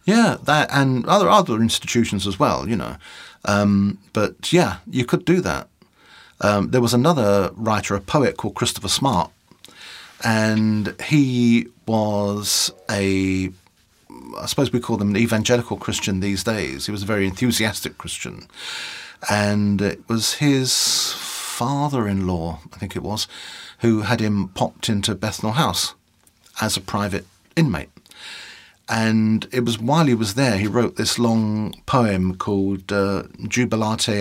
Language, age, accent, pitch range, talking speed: English, 40-59, British, 100-115 Hz, 145 wpm